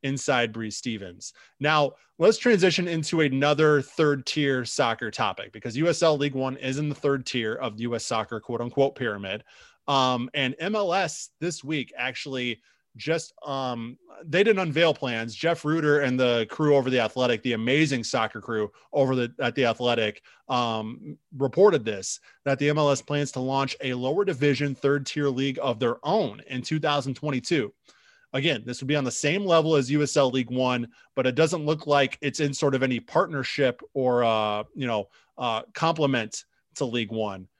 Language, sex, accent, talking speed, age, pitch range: English, male, American, 175 wpm, 20-39, 125-155 Hz